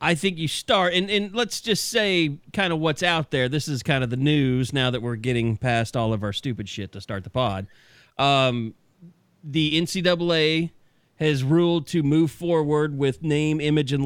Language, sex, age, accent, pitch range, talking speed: English, male, 30-49, American, 130-195 Hz, 195 wpm